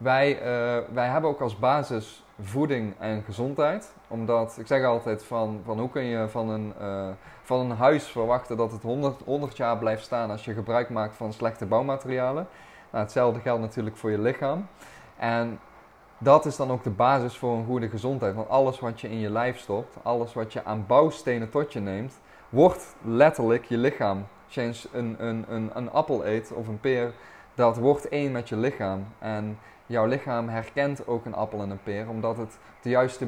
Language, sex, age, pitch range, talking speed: Dutch, male, 20-39, 110-125 Hz, 200 wpm